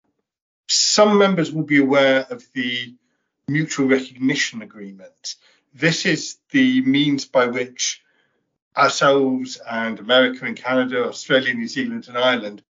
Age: 50-69